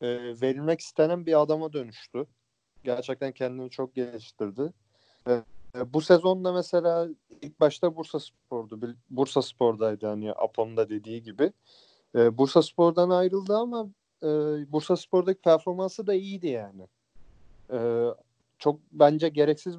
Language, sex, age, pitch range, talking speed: Turkish, male, 40-59, 120-165 Hz, 125 wpm